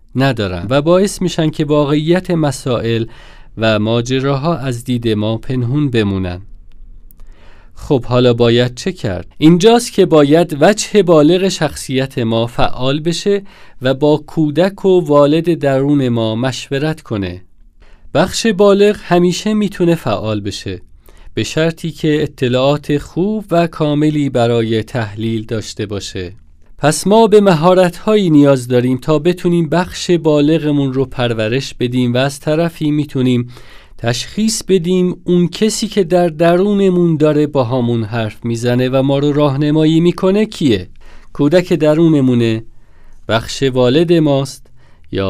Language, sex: Persian, male